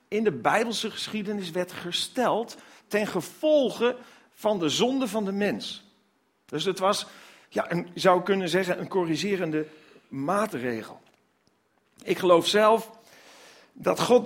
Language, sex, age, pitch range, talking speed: Dutch, male, 50-69, 165-230 Hz, 125 wpm